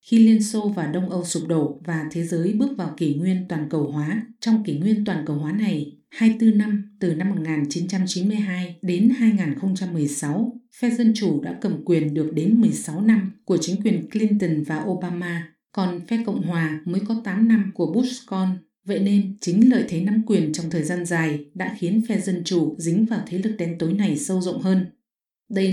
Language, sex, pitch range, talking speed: English, female, 170-215 Hz, 205 wpm